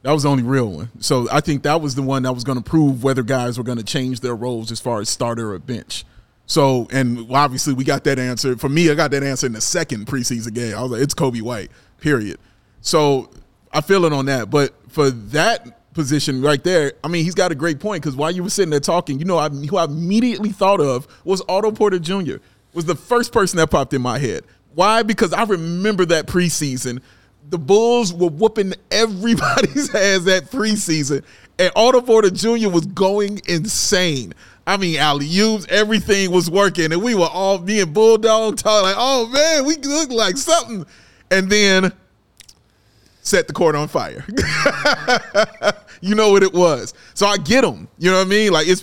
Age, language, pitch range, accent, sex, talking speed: 30-49, English, 135-195 Hz, American, male, 210 wpm